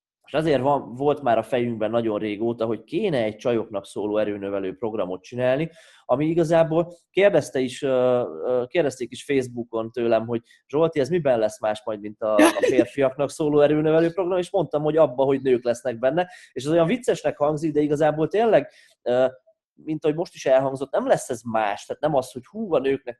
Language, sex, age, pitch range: Hungarian, male, 20-39, 120-150 Hz